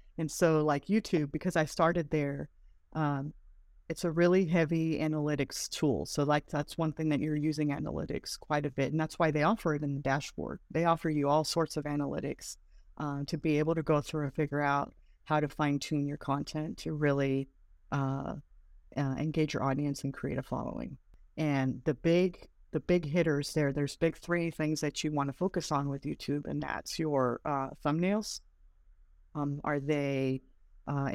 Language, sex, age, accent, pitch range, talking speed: English, female, 40-59, American, 140-160 Hz, 185 wpm